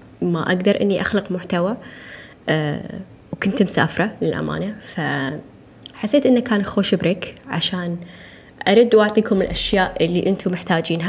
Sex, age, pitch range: female, 20-39, 175-220 Hz